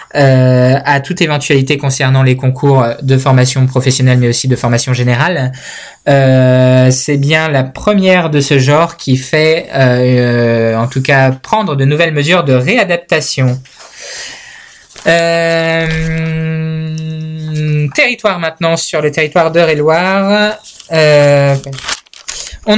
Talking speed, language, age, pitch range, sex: 115 wpm, French, 20-39, 135-160 Hz, male